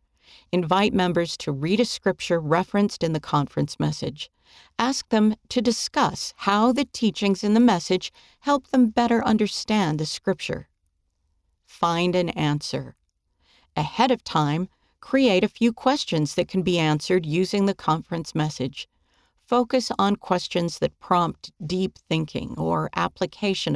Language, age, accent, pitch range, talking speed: English, 50-69, American, 155-225 Hz, 135 wpm